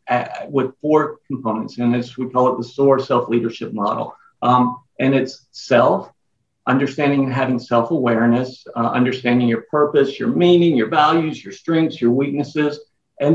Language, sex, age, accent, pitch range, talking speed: English, male, 50-69, American, 125-165 Hz, 150 wpm